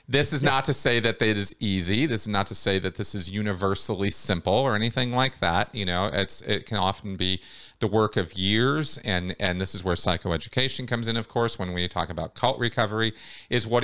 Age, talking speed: 40-59, 225 wpm